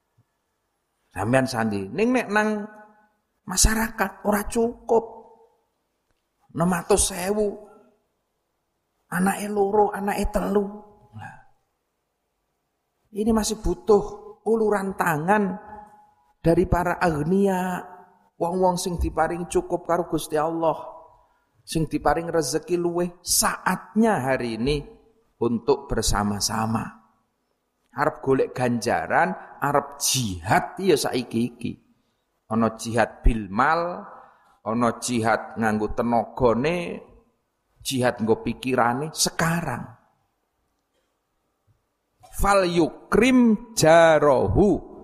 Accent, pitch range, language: native, 130-205 Hz, Indonesian